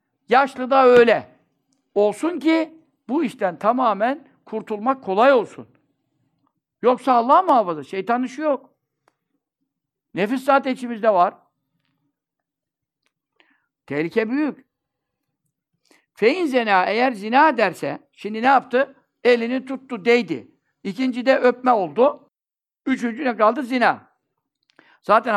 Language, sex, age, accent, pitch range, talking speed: Turkish, male, 60-79, native, 195-265 Hz, 95 wpm